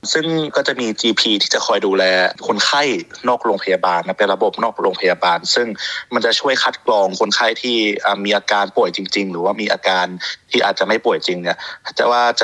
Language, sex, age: Thai, male, 20-39